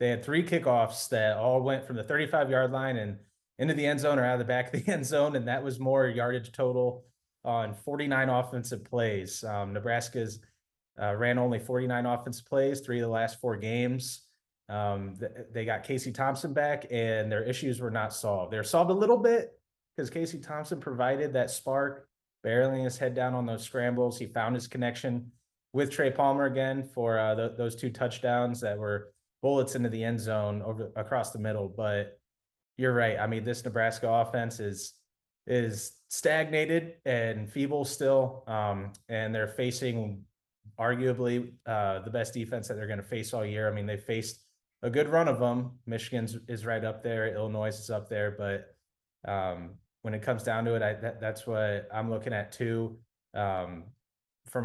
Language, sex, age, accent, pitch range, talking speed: English, male, 20-39, American, 110-130 Hz, 185 wpm